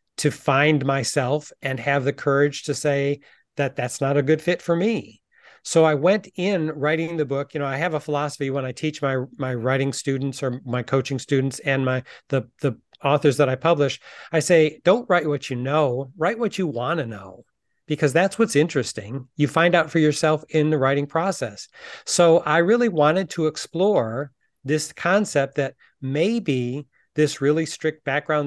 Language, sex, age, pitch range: English, male, 40-59, 135-155 Hz